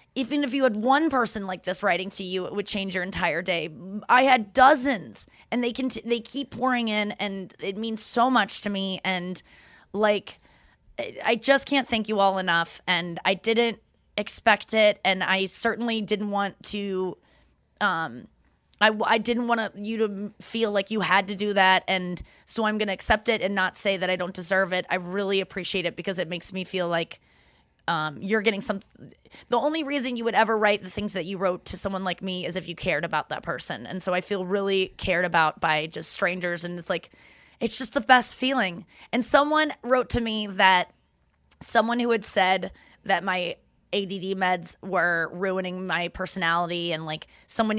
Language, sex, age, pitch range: English, female, 20-39, 180-225 Hz